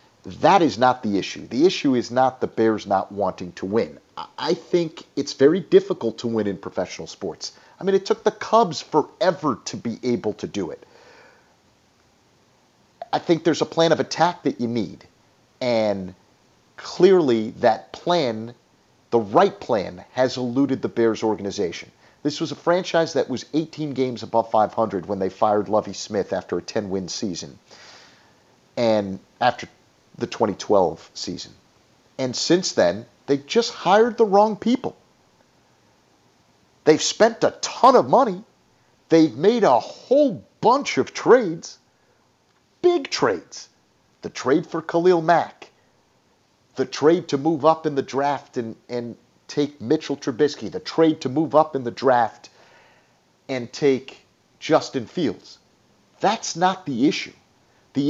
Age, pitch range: 40-59, 115-170 Hz